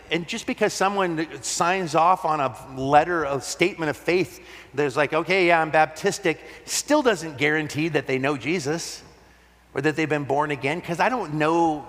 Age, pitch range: 40-59, 120-165 Hz